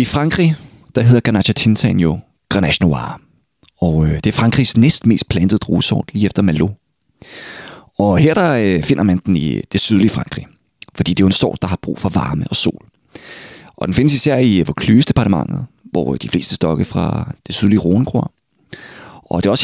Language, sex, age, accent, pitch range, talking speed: Danish, male, 30-49, native, 95-135 Hz, 190 wpm